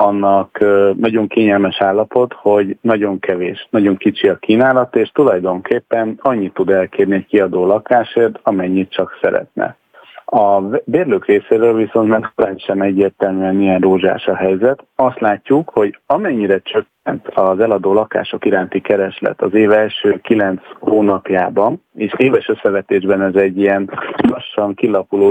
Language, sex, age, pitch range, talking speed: Hungarian, male, 40-59, 95-120 Hz, 135 wpm